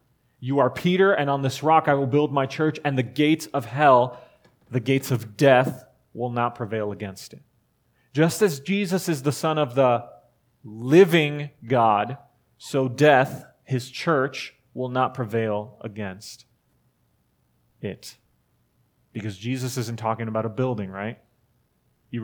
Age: 30-49